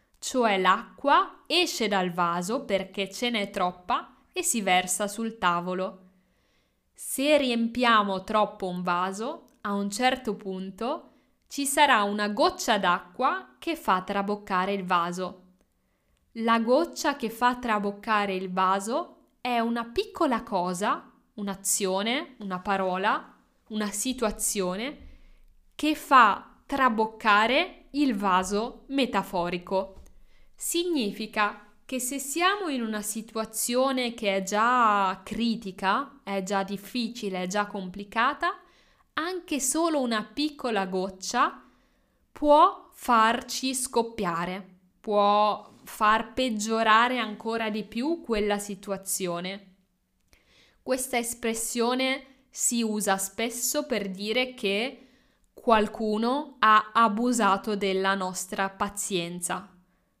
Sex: female